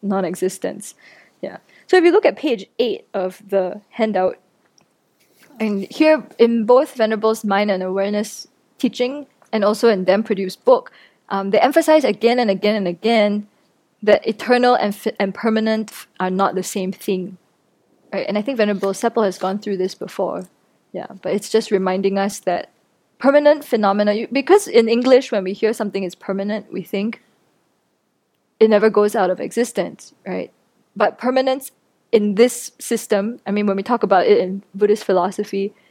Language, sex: English, female